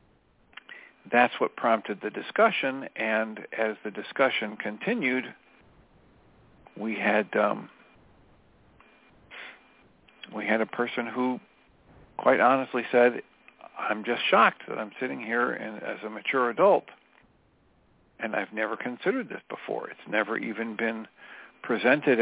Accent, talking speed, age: American, 120 wpm, 50-69